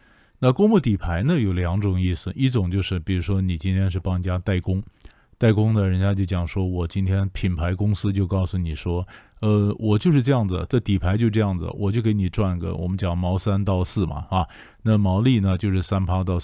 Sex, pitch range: male, 90-115 Hz